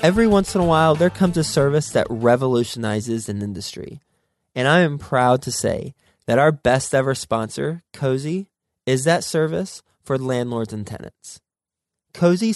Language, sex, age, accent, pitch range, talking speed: English, male, 20-39, American, 120-150 Hz, 160 wpm